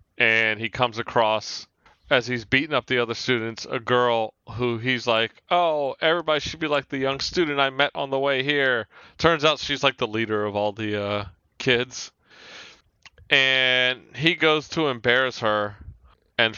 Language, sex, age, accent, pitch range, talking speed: English, male, 30-49, American, 110-140 Hz, 175 wpm